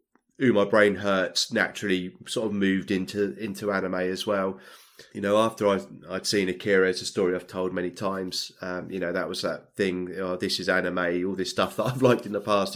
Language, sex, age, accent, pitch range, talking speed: English, male, 30-49, British, 95-105 Hz, 230 wpm